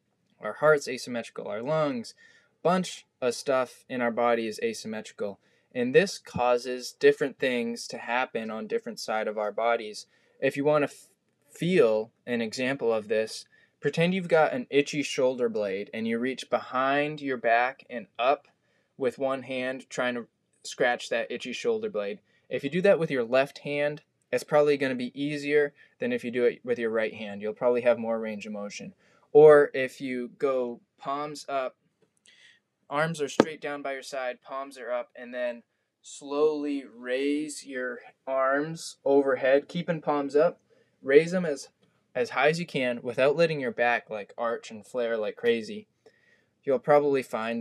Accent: American